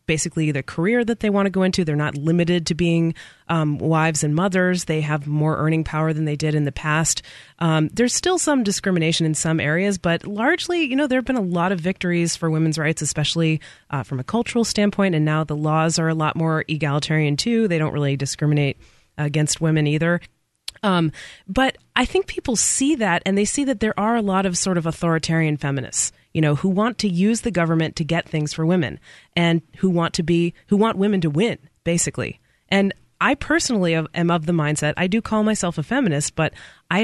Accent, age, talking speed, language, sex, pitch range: American, 30-49, 215 wpm, English, female, 155-195 Hz